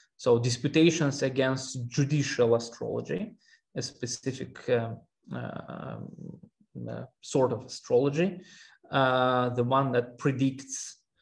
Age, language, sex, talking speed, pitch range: 20-39, English, male, 90 wpm, 120-150 Hz